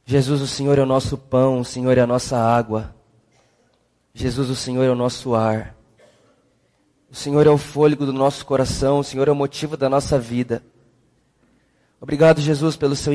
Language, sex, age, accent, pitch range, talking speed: Portuguese, male, 20-39, Brazilian, 135-170 Hz, 185 wpm